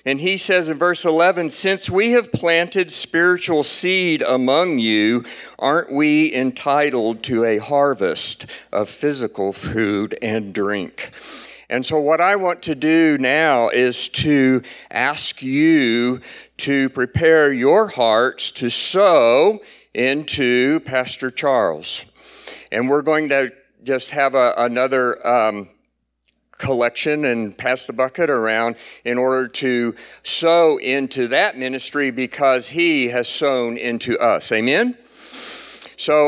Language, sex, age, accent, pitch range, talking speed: English, male, 50-69, American, 120-155 Hz, 125 wpm